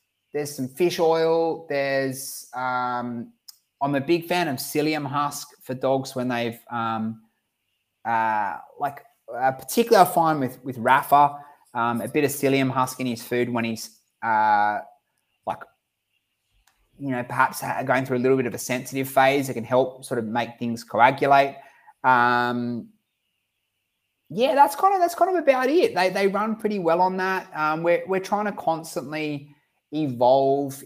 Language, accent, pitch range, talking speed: English, Australian, 120-150 Hz, 165 wpm